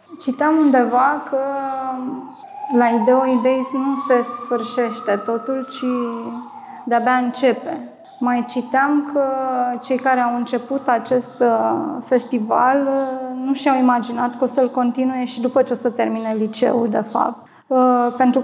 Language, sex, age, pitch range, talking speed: Romanian, female, 20-39, 235-265 Hz, 125 wpm